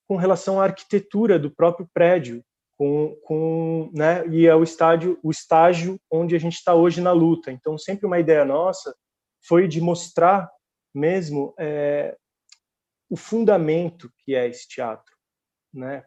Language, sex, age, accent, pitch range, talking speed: Portuguese, male, 20-39, Brazilian, 140-165 Hz, 150 wpm